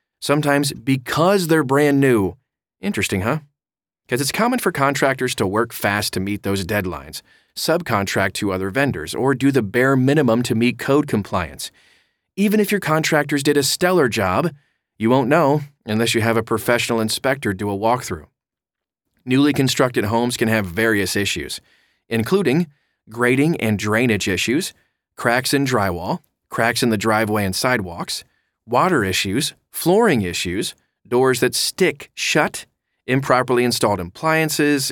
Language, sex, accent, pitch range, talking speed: English, male, American, 110-150 Hz, 145 wpm